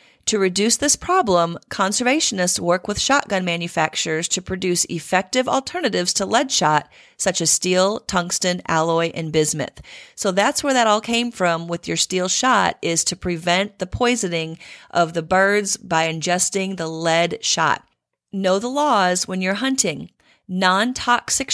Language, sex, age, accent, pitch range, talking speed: English, female, 40-59, American, 170-225 Hz, 155 wpm